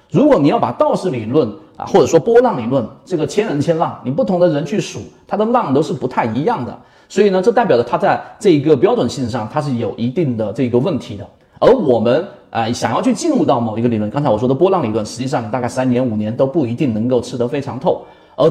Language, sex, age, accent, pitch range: Chinese, male, 30-49, native, 120-175 Hz